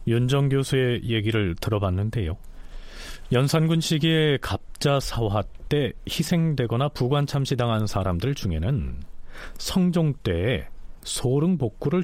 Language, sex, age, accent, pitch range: Korean, male, 40-59, native, 100-150 Hz